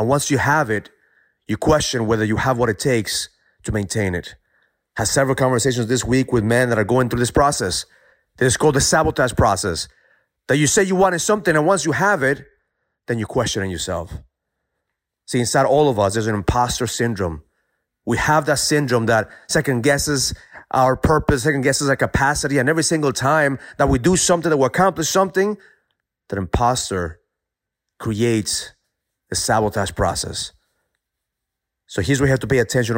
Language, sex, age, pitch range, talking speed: English, male, 30-49, 110-150 Hz, 180 wpm